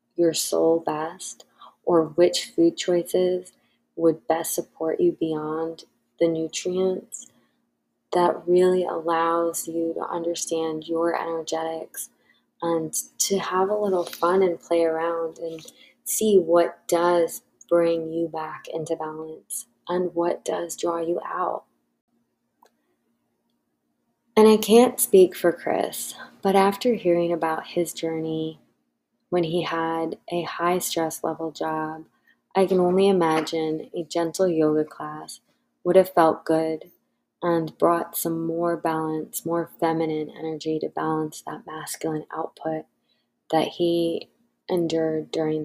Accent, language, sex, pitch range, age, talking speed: American, English, female, 160-175 Hz, 20-39, 125 wpm